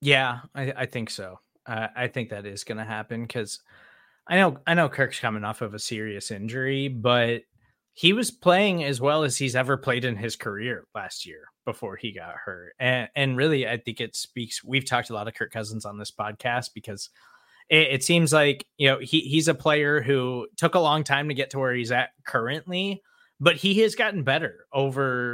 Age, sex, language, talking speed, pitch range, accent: 20-39, male, English, 210 wpm, 115-155 Hz, American